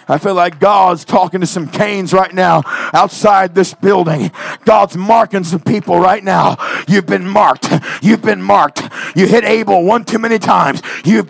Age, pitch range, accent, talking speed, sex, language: 50-69, 195-250 Hz, American, 175 wpm, male, English